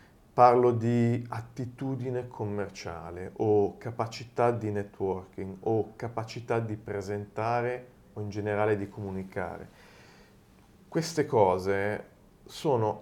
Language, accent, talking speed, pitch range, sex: Italian, native, 90 wpm, 100-120 Hz, male